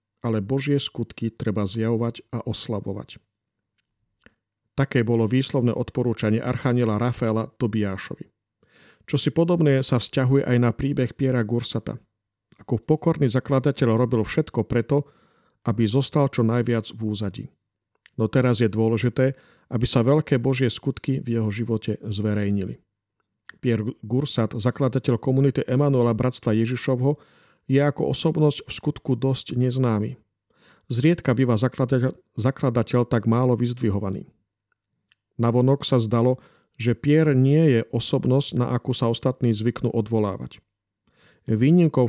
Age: 40-59